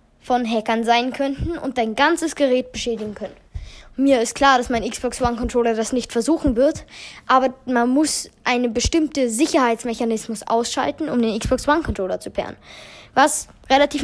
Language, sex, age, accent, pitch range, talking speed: German, female, 10-29, German, 225-285 Hz, 160 wpm